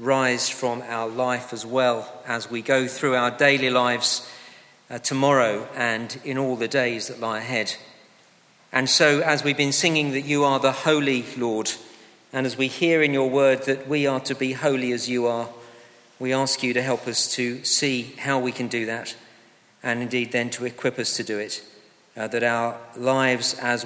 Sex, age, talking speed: male, 40-59, 195 wpm